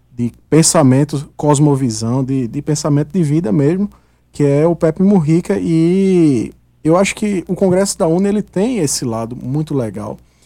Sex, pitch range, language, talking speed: male, 130-165 Hz, Portuguese, 160 wpm